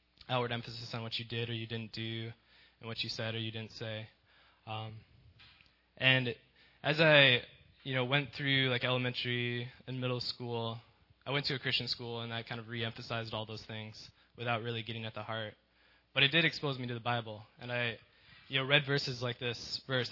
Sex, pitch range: male, 110-130 Hz